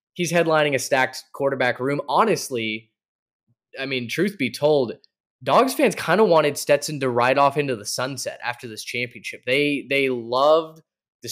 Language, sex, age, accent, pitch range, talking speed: English, male, 10-29, American, 120-145 Hz, 165 wpm